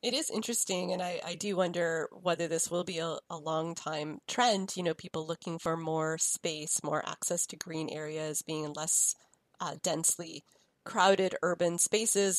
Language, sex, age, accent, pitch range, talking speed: English, female, 30-49, American, 165-195 Hz, 175 wpm